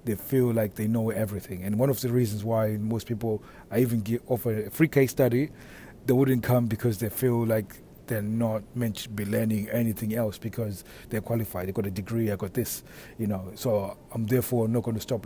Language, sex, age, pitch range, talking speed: English, male, 30-49, 110-125 Hz, 215 wpm